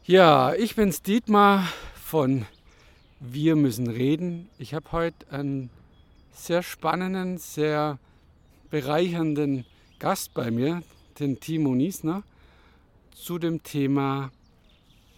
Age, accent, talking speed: 50-69, German, 100 wpm